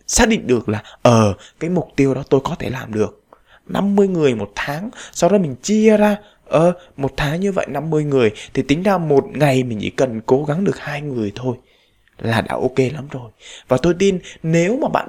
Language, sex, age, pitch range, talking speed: Vietnamese, male, 20-39, 125-175 Hz, 220 wpm